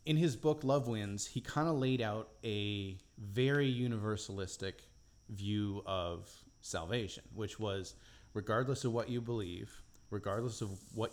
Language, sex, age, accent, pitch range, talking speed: English, male, 30-49, American, 100-120 Hz, 140 wpm